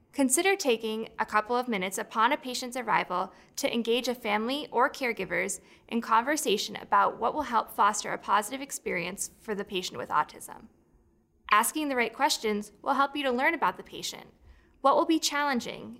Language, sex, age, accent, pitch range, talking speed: English, female, 10-29, American, 210-275 Hz, 175 wpm